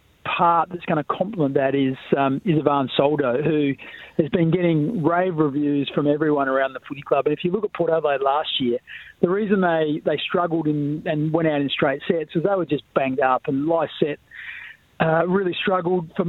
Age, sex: 40-59, male